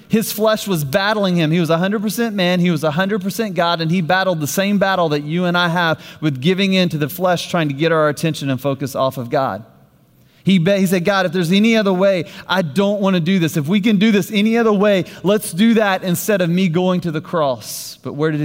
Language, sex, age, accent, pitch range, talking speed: English, male, 30-49, American, 105-175 Hz, 245 wpm